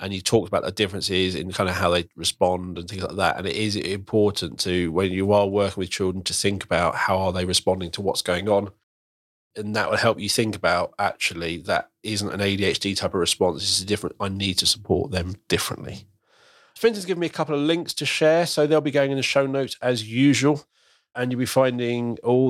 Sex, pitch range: male, 100-140 Hz